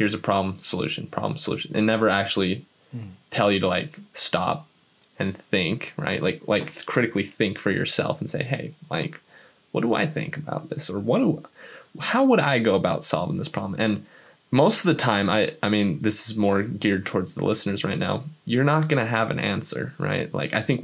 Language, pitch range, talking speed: English, 100-115 Hz, 205 wpm